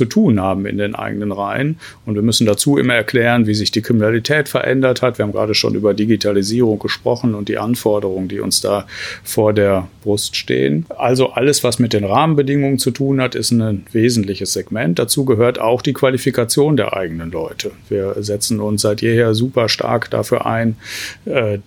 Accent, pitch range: German, 105-125 Hz